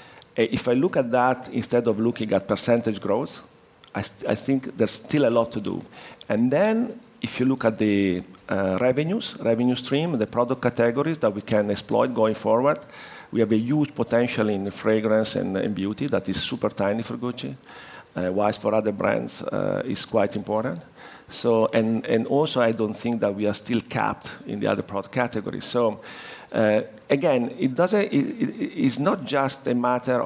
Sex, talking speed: male, 190 wpm